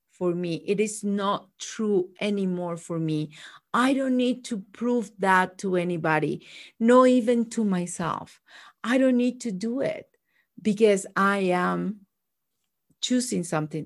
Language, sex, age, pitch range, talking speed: English, female, 50-69, 180-235 Hz, 140 wpm